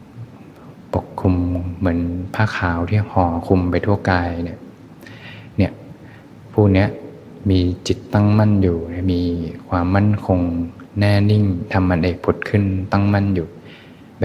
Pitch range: 90-100 Hz